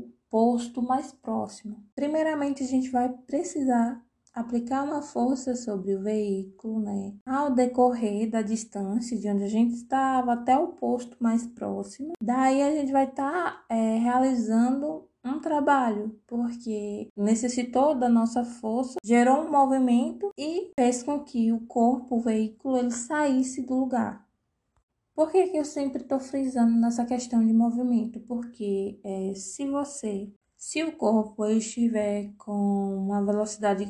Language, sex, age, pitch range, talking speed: Portuguese, female, 20-39, 220-260 Hz, 145 wpm